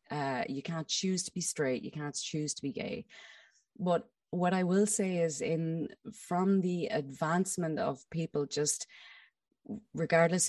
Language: English